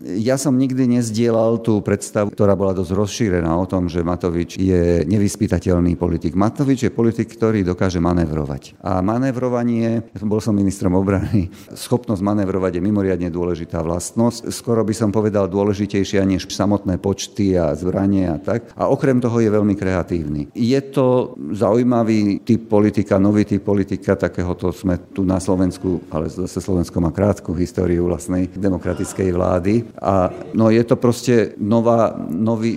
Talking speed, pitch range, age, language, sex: 150 wpm, 95-110 Hz, 50-69, Slovak, male